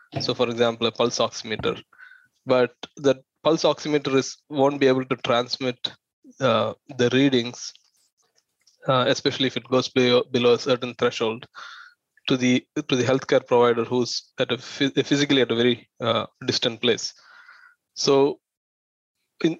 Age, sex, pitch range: 20-39, male, 120-145 Hz